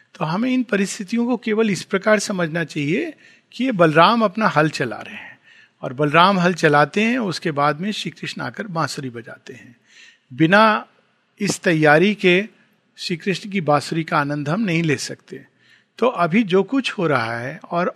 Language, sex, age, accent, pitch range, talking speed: Hindi, male, 50-69, native, 155-215 Hz, 180 wpm